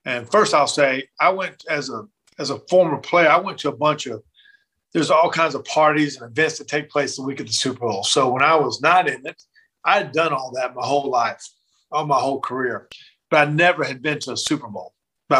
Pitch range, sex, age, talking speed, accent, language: 135-160 Hz, male, 40-59, 245 wpm, American, English